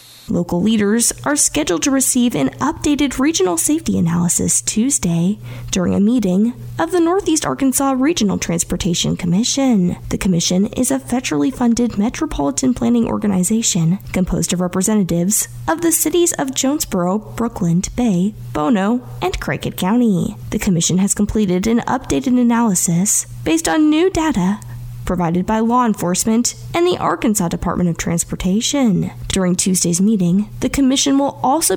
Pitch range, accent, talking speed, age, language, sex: 175-260 Hz, American, 140 wpm, 10-29, English, female